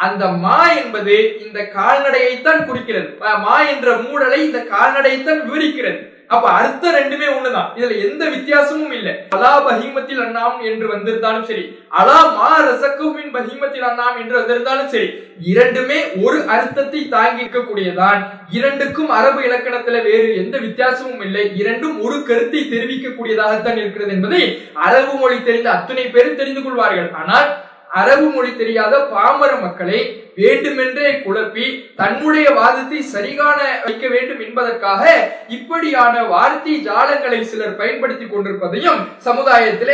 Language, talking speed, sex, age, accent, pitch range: English, 95 wpm, male, 20-39, Indian, 225-285 Hz